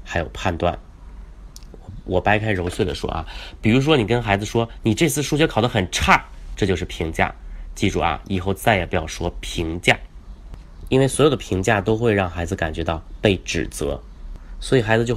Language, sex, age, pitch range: Chinese, male, 30-49, 80-110 Hz